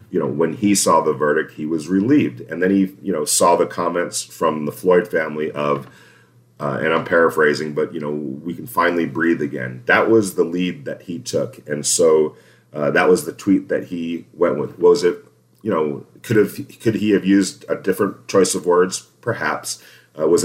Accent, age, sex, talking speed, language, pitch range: American, 40-59, male, 205 wpm, English, 75-95 Hz